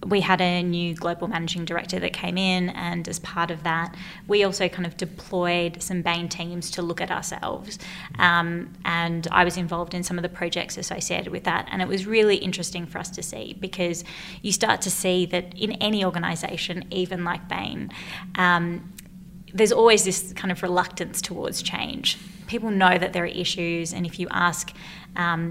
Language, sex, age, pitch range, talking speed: English, female, 20-39, 175-190 Hz, 190 wpm